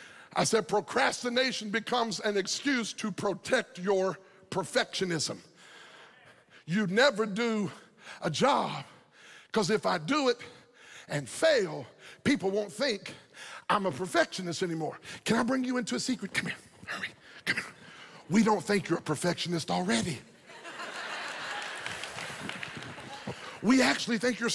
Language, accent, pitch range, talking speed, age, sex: English, American, 215-345 Hz, 125 wpm, 50-69, male